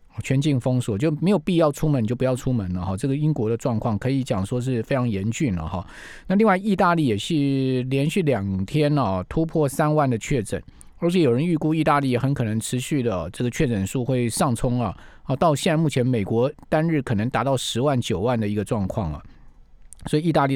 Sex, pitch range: male, 115-155 Hz